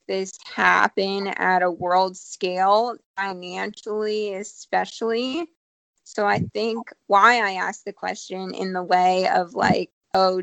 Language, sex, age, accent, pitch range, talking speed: English, female, 20-39, American, 185-200 Hz, 125 wpm